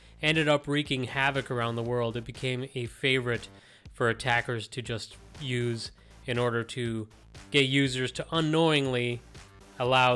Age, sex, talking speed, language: 30-49, male, 140 wpm, English